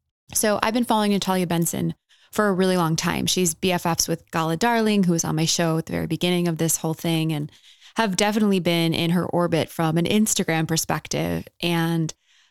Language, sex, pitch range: English, female, 160-190 Hz